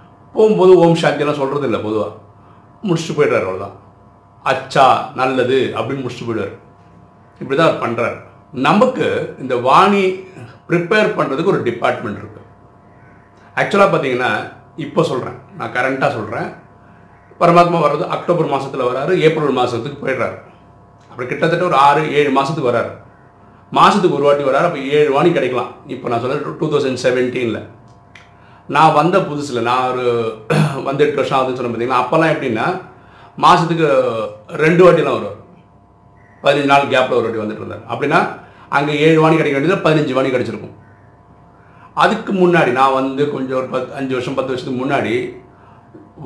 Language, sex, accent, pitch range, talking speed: Tamil, male, native, 115-160 Hz, 130 wpm